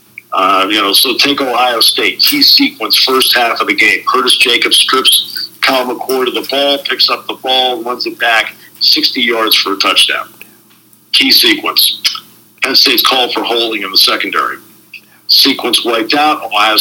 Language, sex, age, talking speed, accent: English, male, 50-69, 170 wpm, American